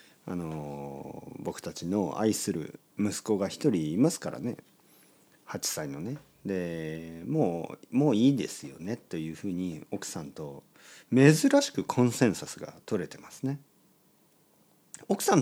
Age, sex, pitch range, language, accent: 40-59, male, 85-130 Hz, Japanese, native